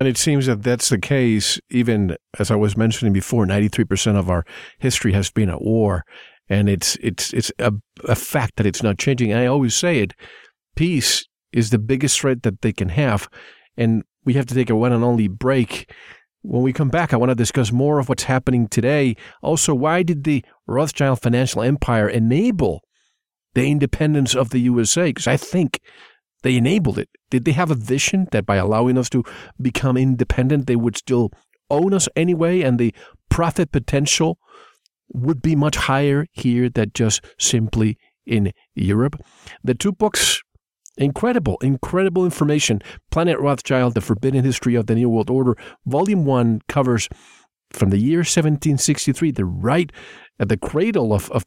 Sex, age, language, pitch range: male, 50-69, English, 110-145 Hz